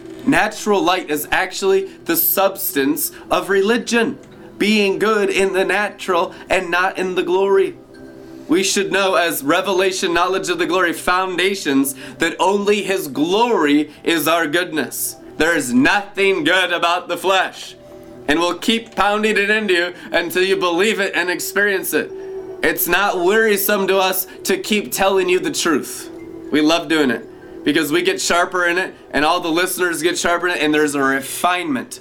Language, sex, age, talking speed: English, male, 20-39, 165 wpm